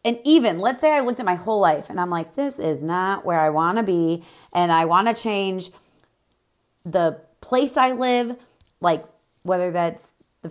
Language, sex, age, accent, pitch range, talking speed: English, female, 30-49, American, 180-225 Hz, 185 wpm